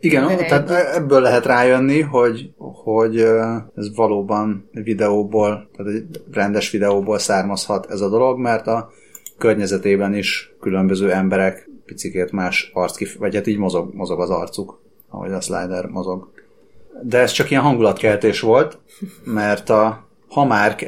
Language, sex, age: Hungarian, male, 30-49